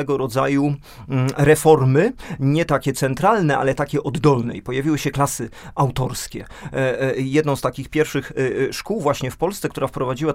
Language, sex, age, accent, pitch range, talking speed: Polish, male, 40-59, native, 130-155 Hz, 135 wpm